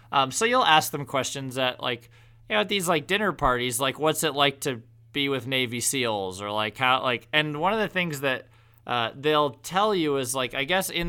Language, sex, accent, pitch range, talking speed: English, male, American, 125-155 Hz, 235 wpm